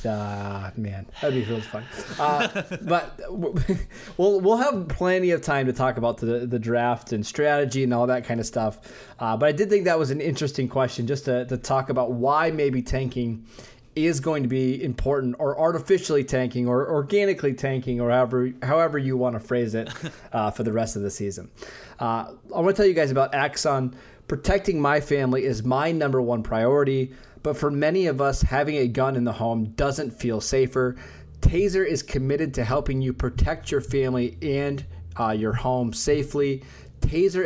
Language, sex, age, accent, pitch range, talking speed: English, male, 20-39, American, 120-150 Hz, 190 wpm